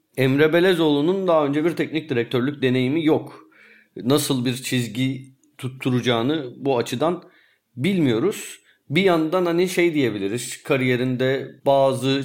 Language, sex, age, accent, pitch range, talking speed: Turkish, male, 40-59, native, 125-155 Hz, 115 wpm